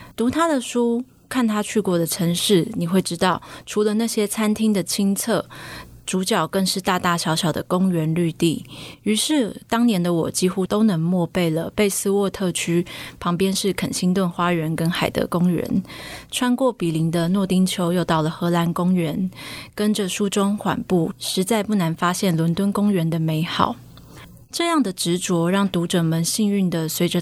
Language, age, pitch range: Chinese, 20-39, 170-205 Hz